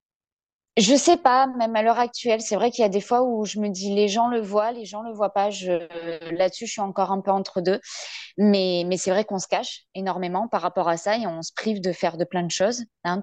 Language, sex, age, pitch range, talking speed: French, female, 20-39, 185-235 Hz, 270 wpm